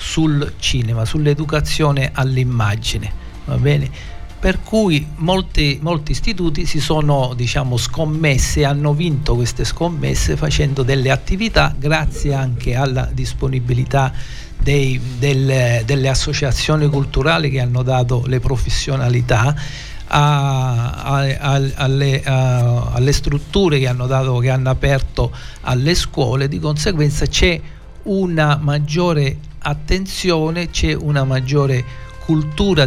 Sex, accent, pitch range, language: male, native, 130-150 Hz, Italian